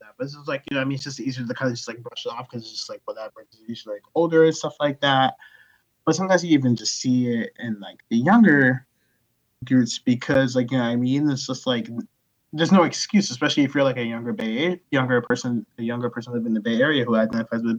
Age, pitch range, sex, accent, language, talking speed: 20-39, 115-150 Hz, male, American, English, 255 wpm